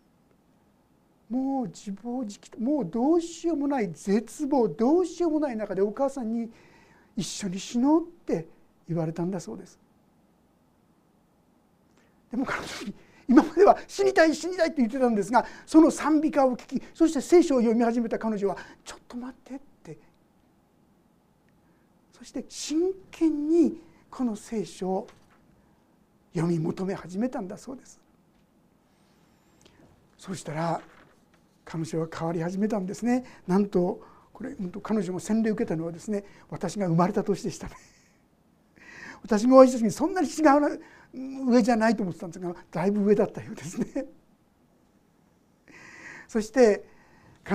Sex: male